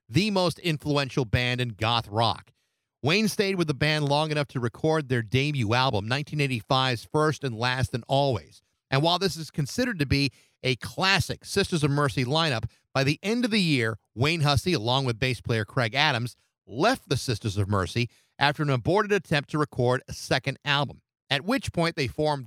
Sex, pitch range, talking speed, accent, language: male, 125-165 Hz, 190 wpm, American, English